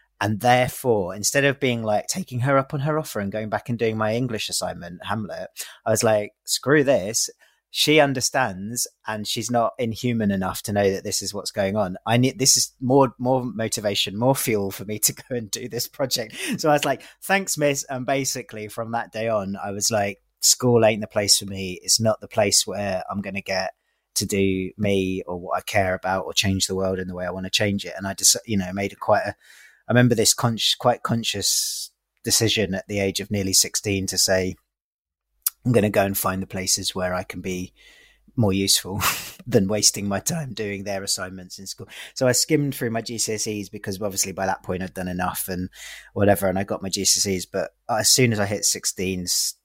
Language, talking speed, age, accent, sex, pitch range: English, 220 wpm, 30-49, British, male, 95-120 Hz